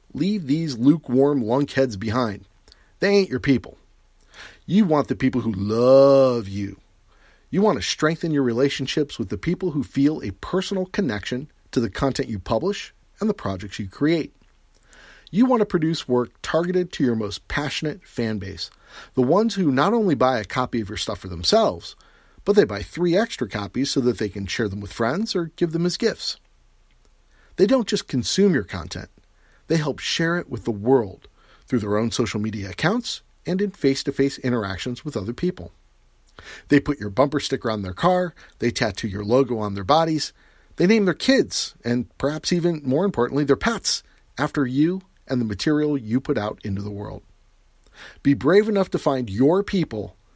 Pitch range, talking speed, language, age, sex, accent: 105-165 Hz, 185 wpm, English, 40-59, male, American